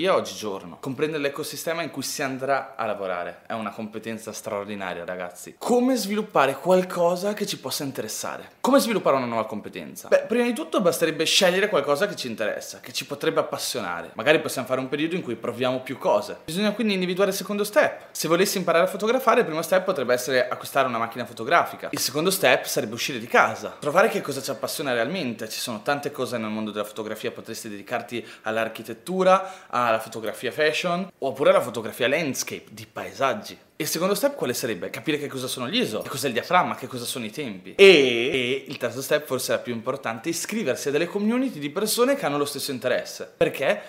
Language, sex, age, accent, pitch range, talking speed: Italian, male, 20-39, native, 120-190 Hz, 200 wpm